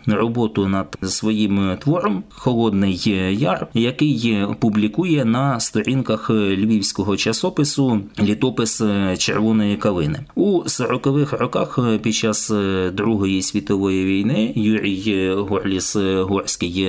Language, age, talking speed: Ukrainian, 20-39, 90 wpm